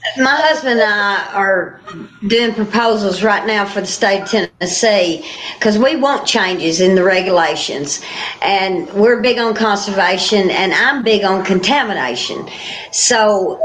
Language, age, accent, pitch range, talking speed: English, 50-69, American, 195-255 Hz, 140 wpm